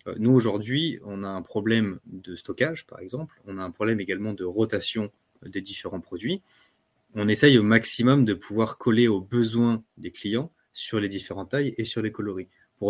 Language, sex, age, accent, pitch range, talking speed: French, male, 20-39, French, 100-115 Hz, 185 wpm